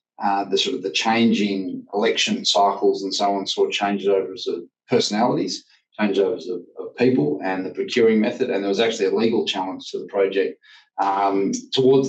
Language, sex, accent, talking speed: English, male, Australian, 180 wpm